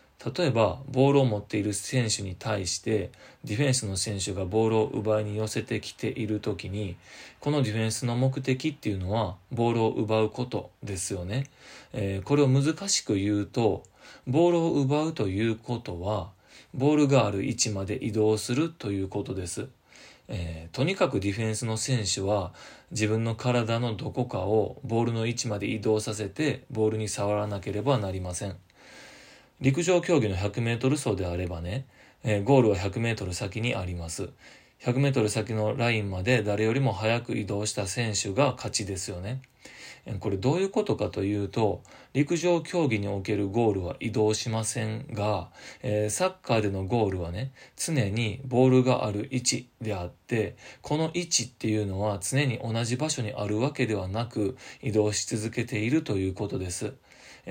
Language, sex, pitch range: Japanese, male, 105-130 Hz